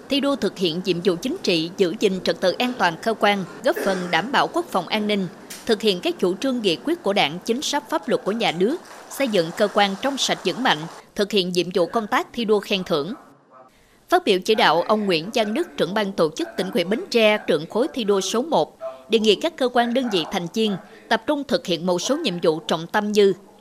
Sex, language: female, Vietnamese